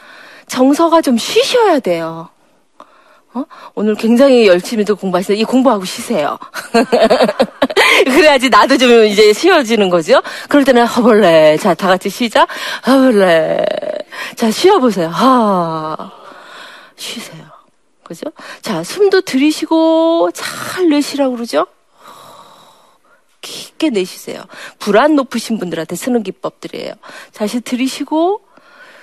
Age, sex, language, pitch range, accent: 40-59, female, Korean, 215-320 Hz, native